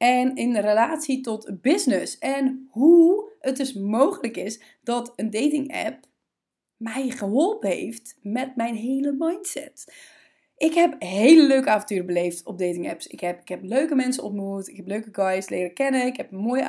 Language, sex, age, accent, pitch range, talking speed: Dutch, female, 20-39, Dutch, 210-290 Hz, 170 wpm